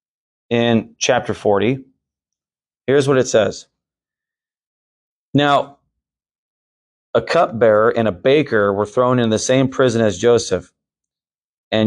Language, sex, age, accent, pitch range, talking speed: English, male, 30-49, American, 105-130 Hz, 110 wpm